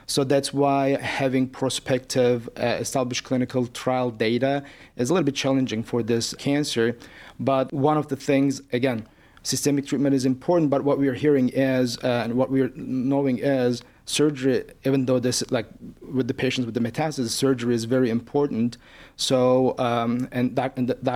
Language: English